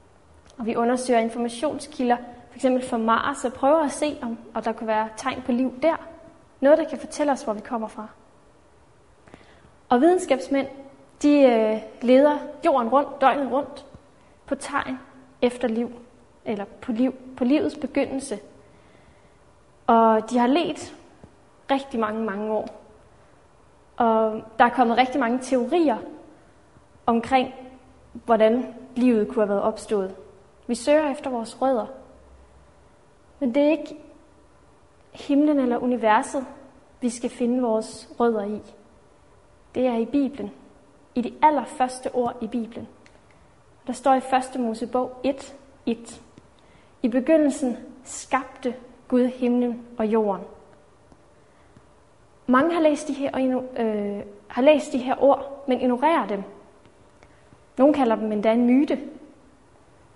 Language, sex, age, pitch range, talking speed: Danish, female, 30-49, 230-280 Hz, 125 wpm